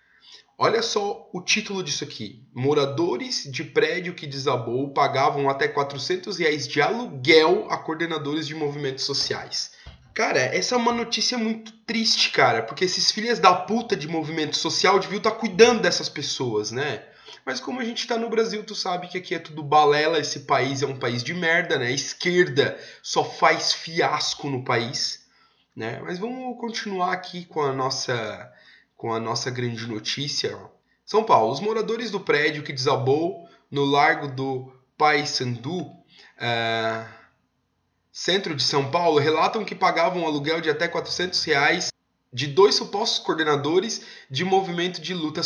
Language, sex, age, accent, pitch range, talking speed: Portuguese, male, 20-39, Brazilian, 140-190 Hz, 160 wpm